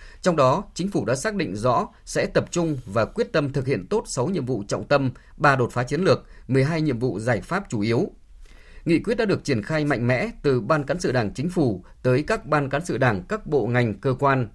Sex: male